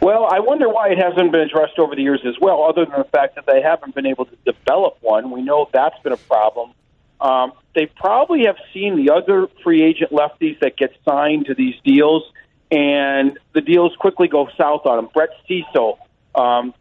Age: 40-59